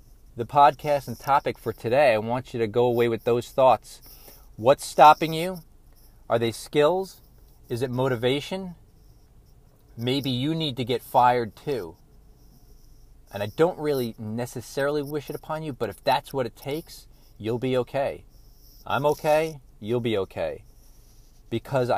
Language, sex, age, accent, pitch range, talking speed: English, male, 40-59, American, 115-145 Hz, 150 wpm